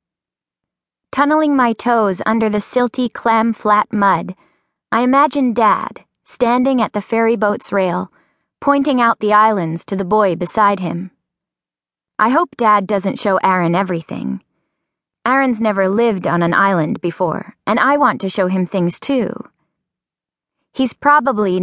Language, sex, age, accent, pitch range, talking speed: English, female, 20-39, American, 180-235 Hz, 140 wpm